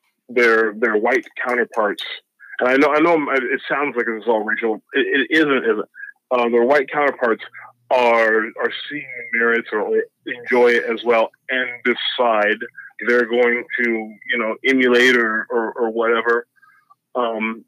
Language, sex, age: English, male, 30-49